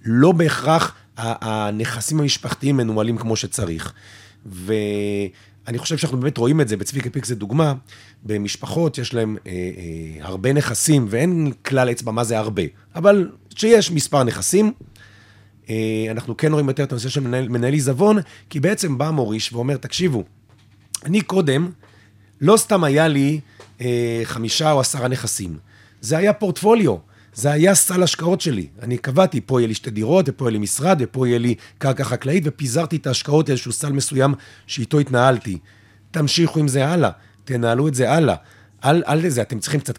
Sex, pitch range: male, 105-145 Hz